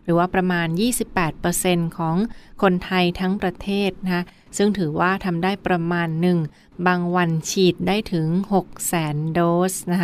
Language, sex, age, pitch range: Thai, female, 20-39, 170-195 Hz